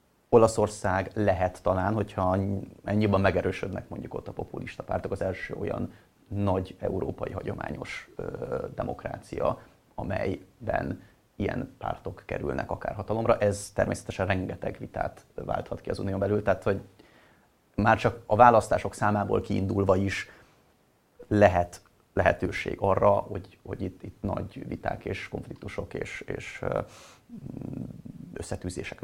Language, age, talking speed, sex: Hungarian, 30-49, 115 wpm, male